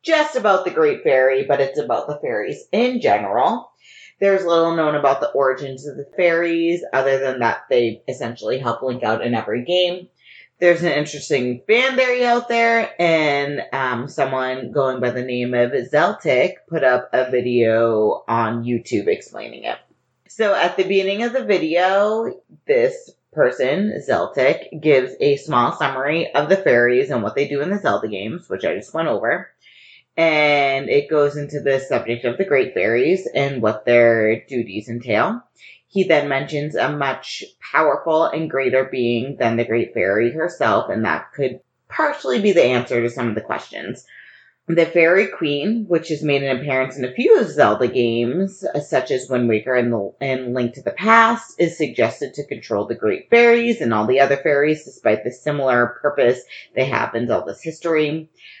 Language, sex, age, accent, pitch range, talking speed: English, female, 30-49, American, 125-190 Hz, 175 wpm